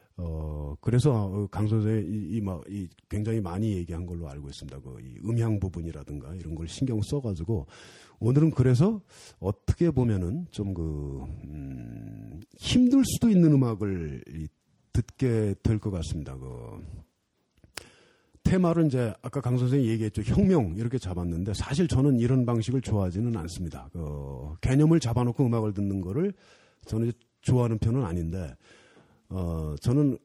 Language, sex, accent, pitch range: Korean, male, native, 95-150 Hz